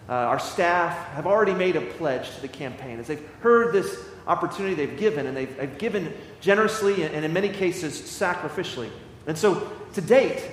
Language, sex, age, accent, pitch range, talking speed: English, male, 30-49, American, 150-200 Hz, 190 wpm